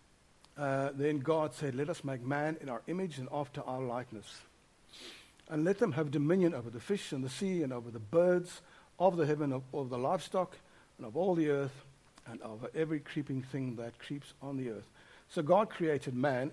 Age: 60-79